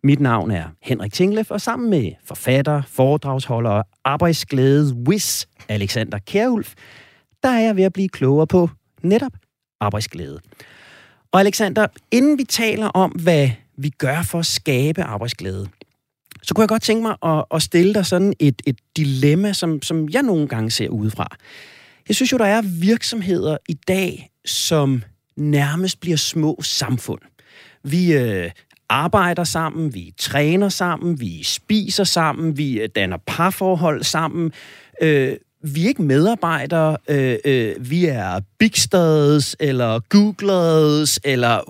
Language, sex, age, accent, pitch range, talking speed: Danish, male, 30-49, native, 135-195 Hz, 140 wpm